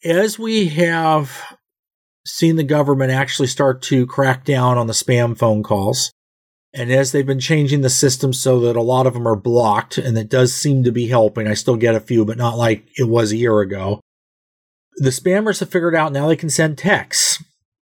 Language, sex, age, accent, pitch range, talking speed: English, male, 40-59, American, 115-140 Hz, 205 wpm